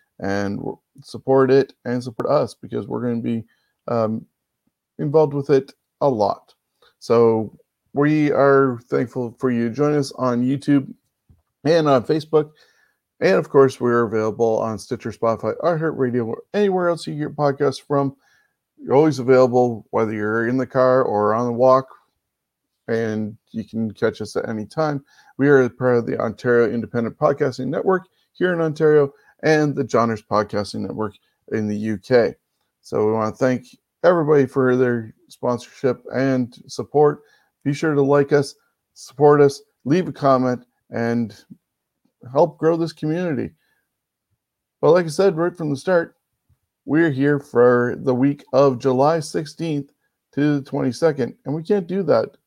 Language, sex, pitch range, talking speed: English, male, 120-150 Hz, 160 wpm